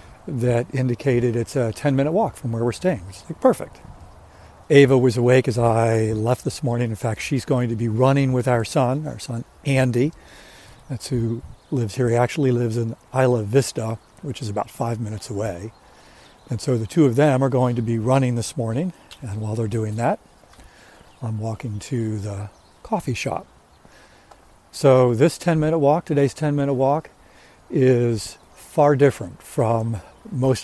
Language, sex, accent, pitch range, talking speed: English, male, American, 115-145 Hz, 170 wpm